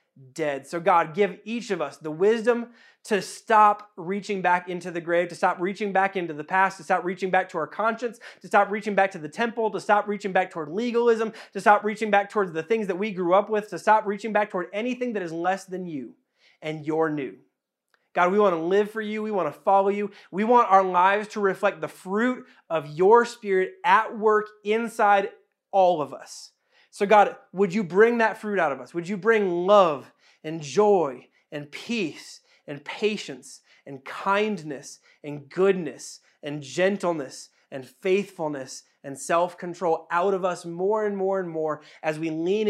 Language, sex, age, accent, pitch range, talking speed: English, male, 30-49, American, 170-210 Hz, 195 wpm